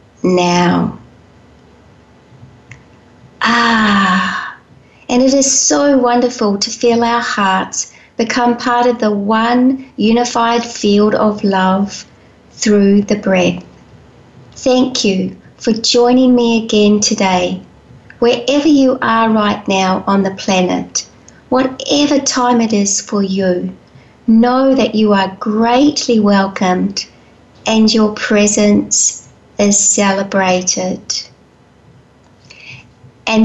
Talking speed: 100 wpm